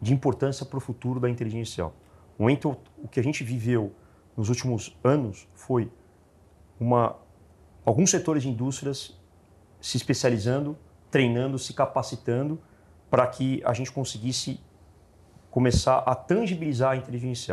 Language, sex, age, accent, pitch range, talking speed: Portuguese, male, 40-59, Brazilian, 115-140 Hz, 125 wpm